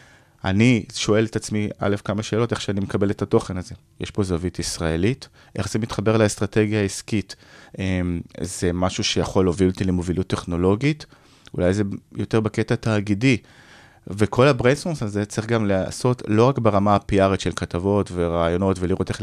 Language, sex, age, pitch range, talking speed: Hebrew, male, 20-39, 95-125 Hz, 155 wpm